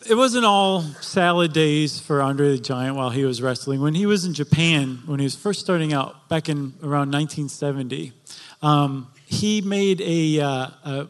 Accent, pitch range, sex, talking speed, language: American, 140-170 Hz, male, 180 wpm, English